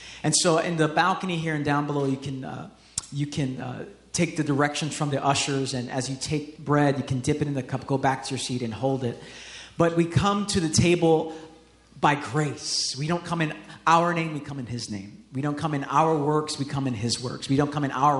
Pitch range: 130-155 Hz